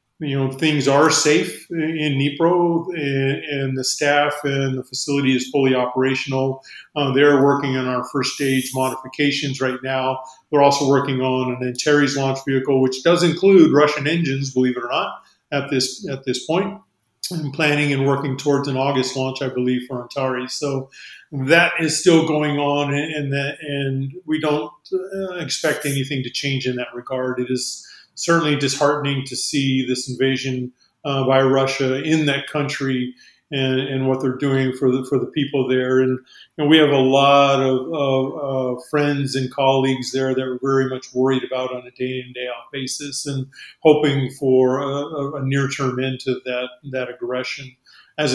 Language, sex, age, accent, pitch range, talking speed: English, male, 40-59, American, 130-145 Hz, 180 wpm